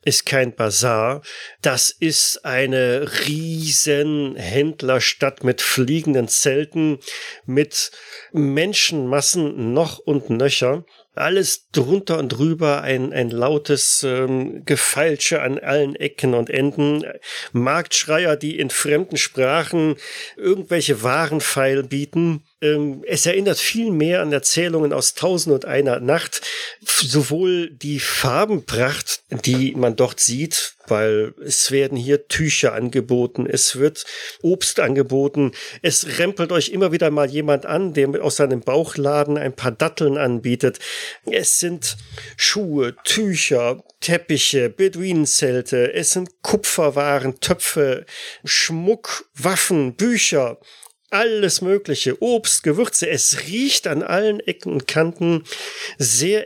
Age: 40-59